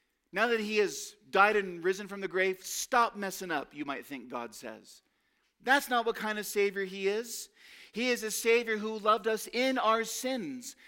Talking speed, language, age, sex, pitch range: 200 wpm, English, 40-59, male, 185-240 Hz